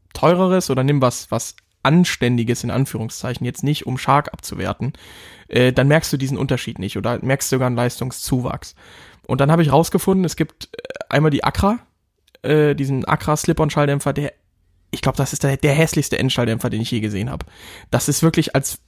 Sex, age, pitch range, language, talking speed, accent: male, 20-39, 125-160 Hz, German, 180 wpm, German